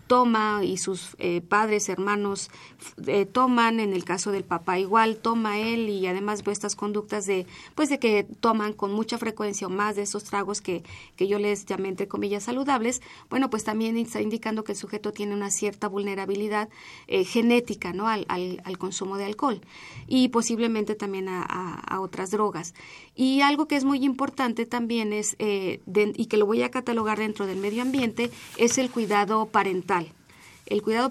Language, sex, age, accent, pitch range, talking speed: Spanish, female, 30-49, Mexican, 200-235 Hz, 190 wpm